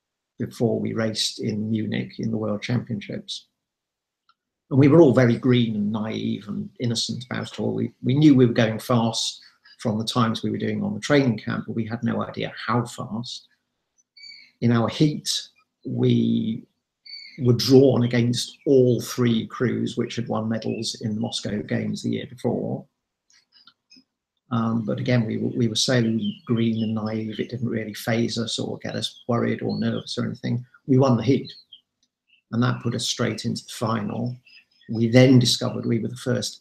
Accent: British